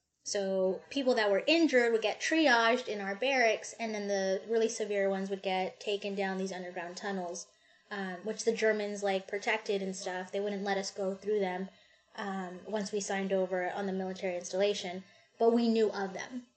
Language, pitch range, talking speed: English, 195-230 Hz, 190 wpm